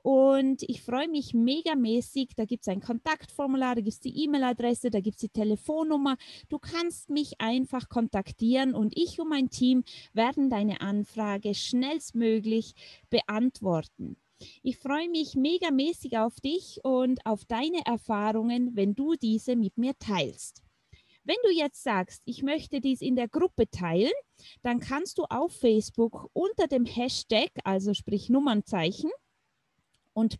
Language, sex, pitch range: German, female, 215-280 Hz